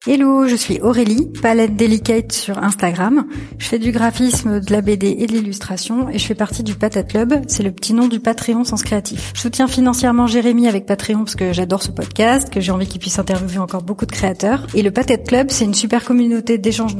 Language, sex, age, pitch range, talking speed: French, female, 30-49, 200-235 Hz, 220 wpm